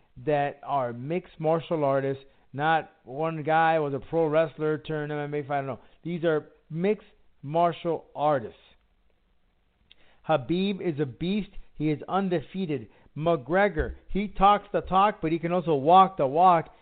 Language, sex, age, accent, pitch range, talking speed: English, male, 50-69, American, 145-175 Hz, 150 wpm